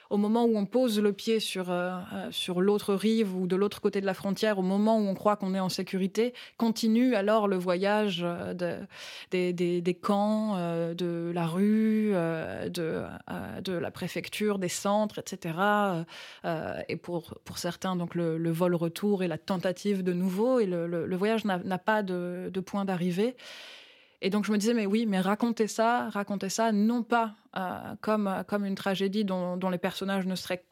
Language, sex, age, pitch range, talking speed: French, female, 20-39, 185-220 Hz, 200 wpm